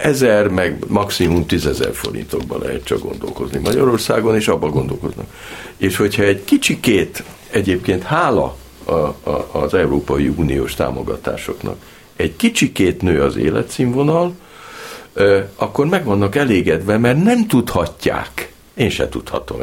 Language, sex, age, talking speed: Hungarian, male, 60-79, 115 wpm